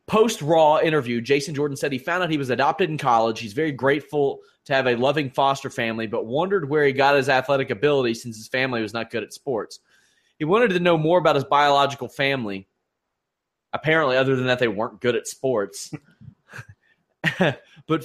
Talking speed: 190 wpm